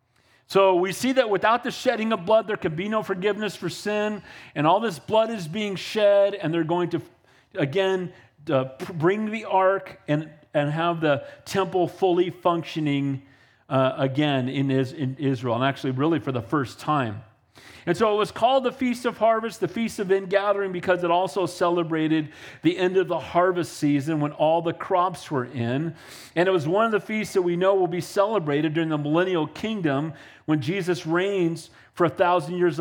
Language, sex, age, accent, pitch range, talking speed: English, male, 40-59, American, 150-195 Hz, 190 wpm